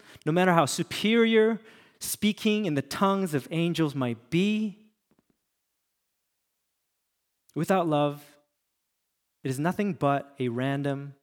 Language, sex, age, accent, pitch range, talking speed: English, male, 30-49, American, 145-205 Hz, 105 wpm